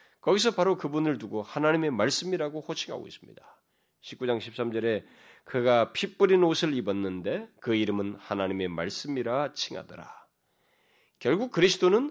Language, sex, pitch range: Korean, male, 125-195 Hz